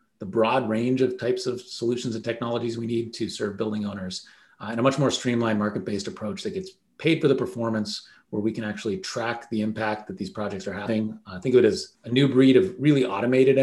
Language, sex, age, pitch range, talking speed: English, male, 30-49, 105-130 Hz, 230 wpm